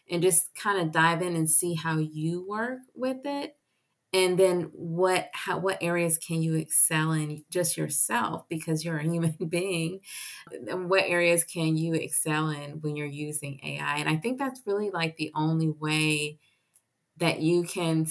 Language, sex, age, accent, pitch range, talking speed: English, female, 20-39, American, 155-180 Hz, 175 wpm